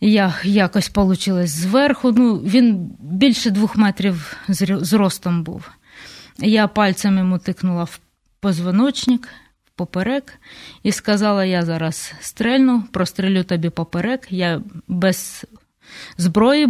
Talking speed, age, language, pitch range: 110 wpm, 20-39, Ukrainian, 180-220 Hz